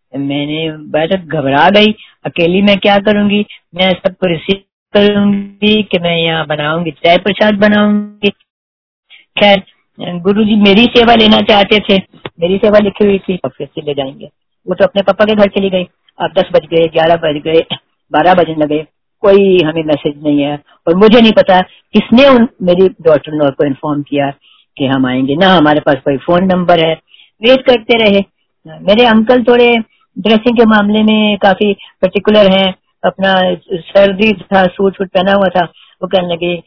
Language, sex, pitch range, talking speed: Hindi, female, 160-205 Hz, 170 wpm